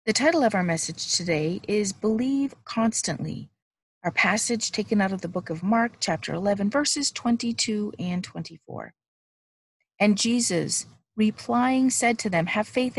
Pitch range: 180-230 Hz